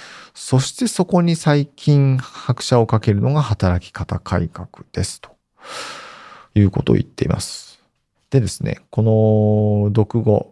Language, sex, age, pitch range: Japanese, male, 40-59, 105-135 Hz